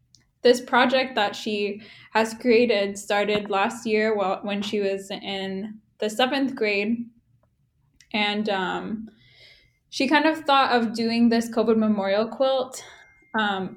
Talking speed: 130 wpm